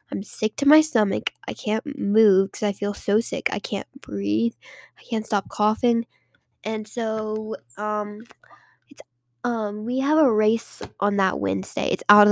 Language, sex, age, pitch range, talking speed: English, female, 10-29, 195-230 Hz, 170 wpm